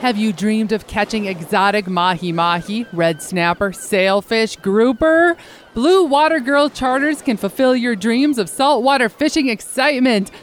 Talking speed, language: 130 wpm, English